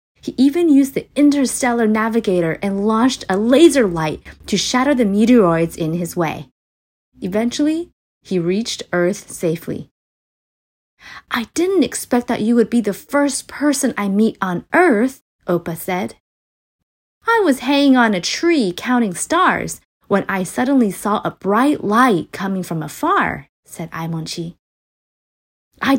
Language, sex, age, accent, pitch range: Chinese, female, 30-49, American, 185-270 Hz